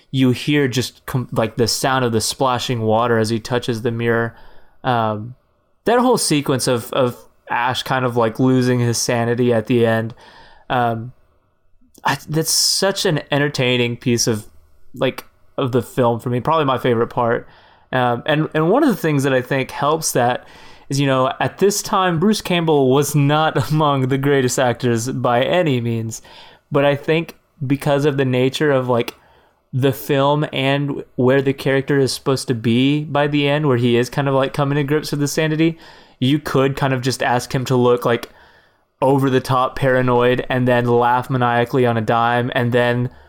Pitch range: 120-145 Hz